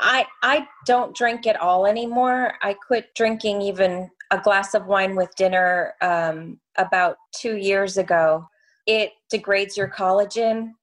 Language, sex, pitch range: English, female, 180-210 Hz